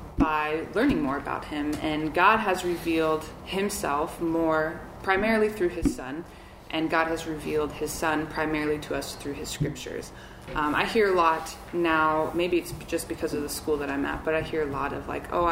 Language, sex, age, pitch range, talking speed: English, female, 20-39, 155-175 Hz, 195 wpm